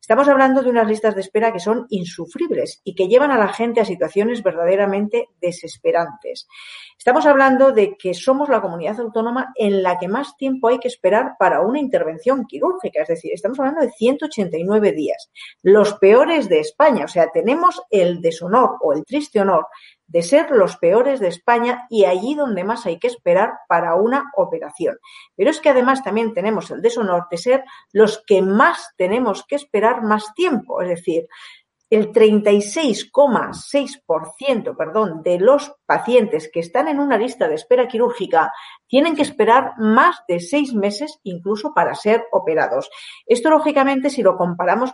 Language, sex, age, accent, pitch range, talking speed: Spanish, female, 40-59, Spanish, 195-275 Hz, 165 wpm